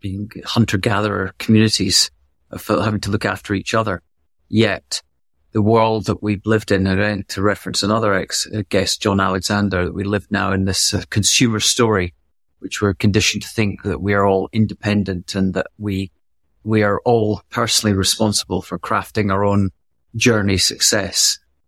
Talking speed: 160 wpm